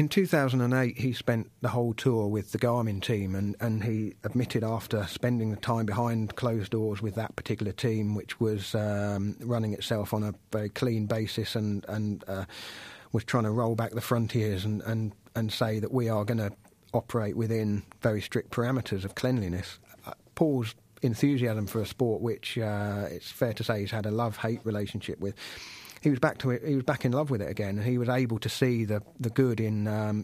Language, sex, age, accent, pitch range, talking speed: English, male, 30-49, British, 105-120 Hz, 205 wpm